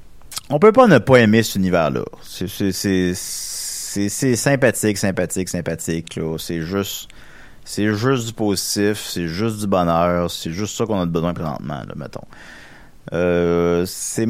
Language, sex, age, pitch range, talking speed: French, male, 30-49, 95-120 Hz, 165 wpm